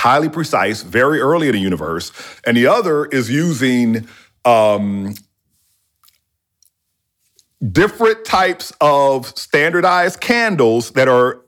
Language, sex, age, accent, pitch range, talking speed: English, male, 40-59, American, 120-165 Hz, 105 wpm